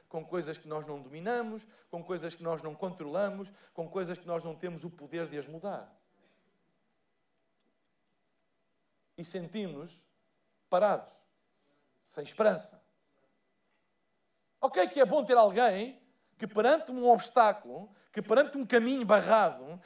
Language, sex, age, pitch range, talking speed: Portuguese, male, 50-69, 185-255 Hz, 130 wpm